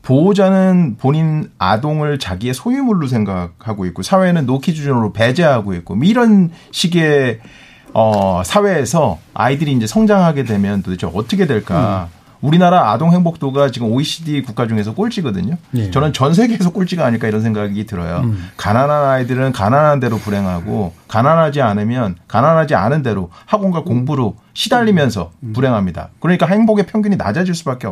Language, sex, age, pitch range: Korean, male, 40-59, 110-175 Hz